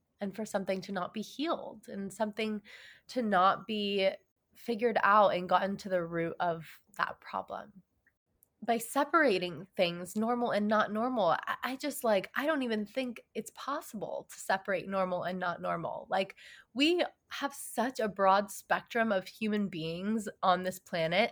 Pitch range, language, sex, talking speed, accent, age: 180-230 Hz, English, female, 160 wpm, American, 20-39